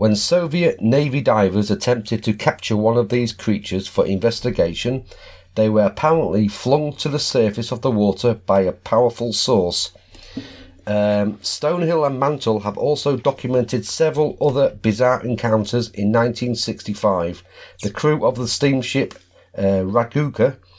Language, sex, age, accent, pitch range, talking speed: English, male, 40-59, British, 105-135 Hz, 135 wpm